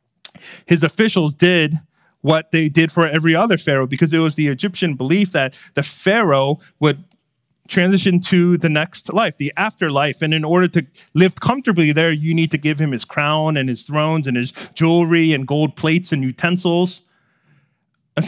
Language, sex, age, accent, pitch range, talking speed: English, male, 30-49, American, 140-175 Hz, 175 wpm